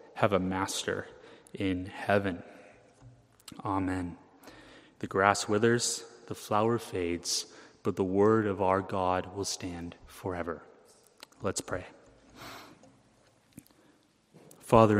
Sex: male